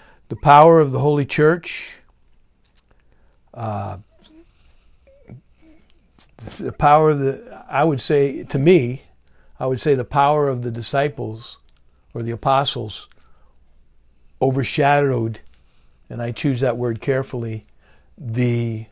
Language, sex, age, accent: English, male, 60-79, American